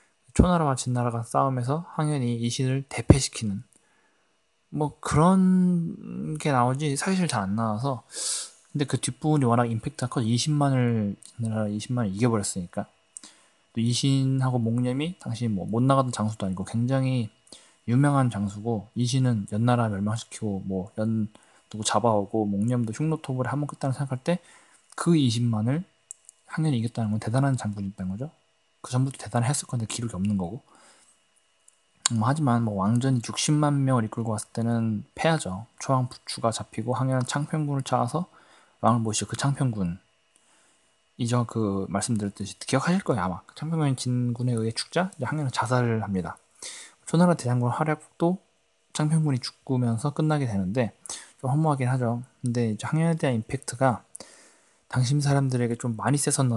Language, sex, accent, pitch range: Korean, male, native, 110-140 Hz